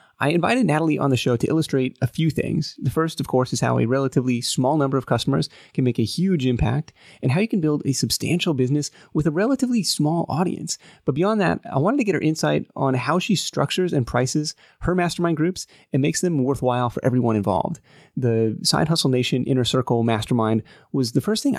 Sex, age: male, 30-49